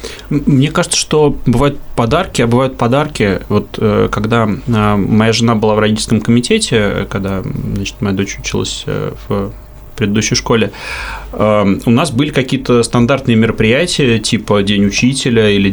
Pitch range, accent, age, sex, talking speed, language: 105-125 Hz, native, 20-39, male, 120 wpm, Russian